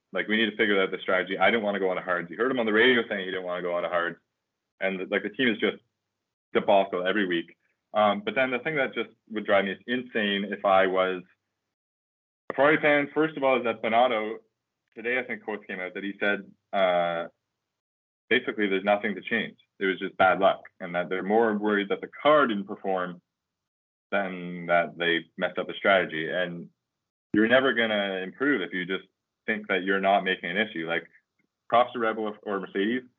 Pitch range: 90-115 Hz